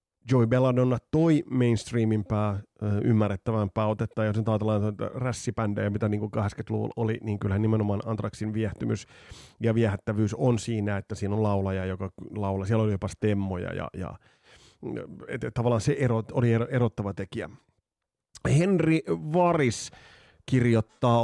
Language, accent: Finnish, native